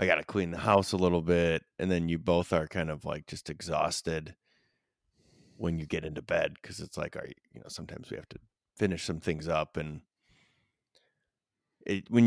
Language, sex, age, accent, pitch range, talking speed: English, male, 30-49, American, 80-95 Hz, 205 wpm